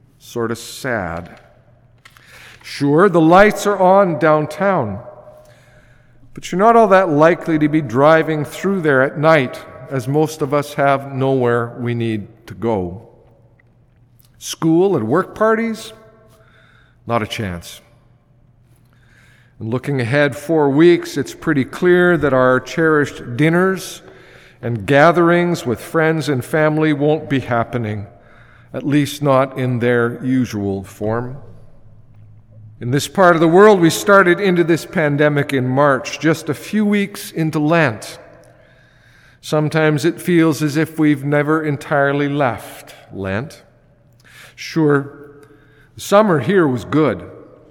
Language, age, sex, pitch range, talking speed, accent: English, 50-69, male, 120-160 Hz, 130 wpm, American